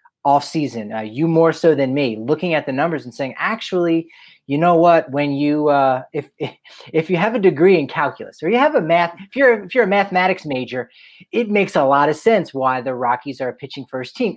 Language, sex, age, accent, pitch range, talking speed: English, male, 30-49, American, 140-200 Hz, 235 wpm